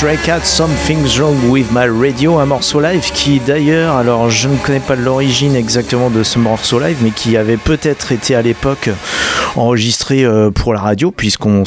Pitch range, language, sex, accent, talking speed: 105-130 Hz, French, male, French, 180 wpm